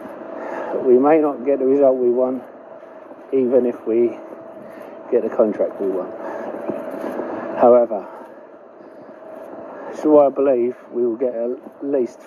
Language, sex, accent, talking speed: English, male, British, 120 wpm